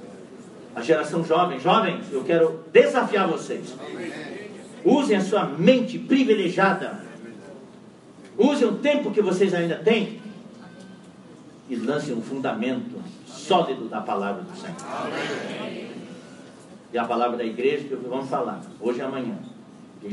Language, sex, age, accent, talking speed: English, male, 50-69, Brazilian, 120 wpm